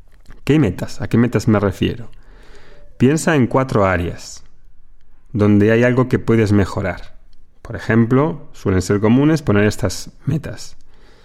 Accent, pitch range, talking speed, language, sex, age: Spanish, 95-130 Hz, 135 wpm, Spanish, male, 30-49